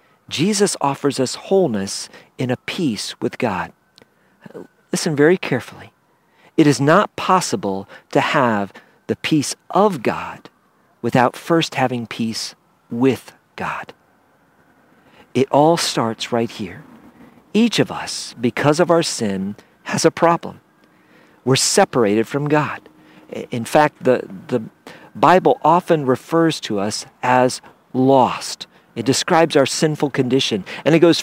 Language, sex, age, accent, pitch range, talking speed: English, male, 50-69, American, 120-175 Hz, 125 wpm